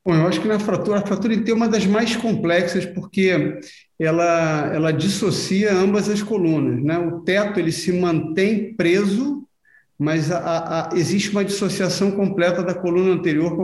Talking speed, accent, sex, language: 180 wpm, Brazilian, male, Portuguese